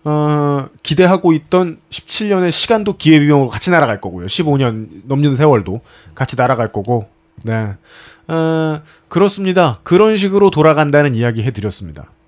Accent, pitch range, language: native, 115-185 Hz, Korean